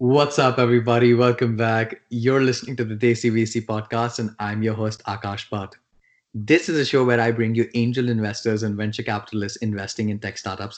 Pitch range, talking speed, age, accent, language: 105-130 Hz, 195 wpm, 30-49, Indian, English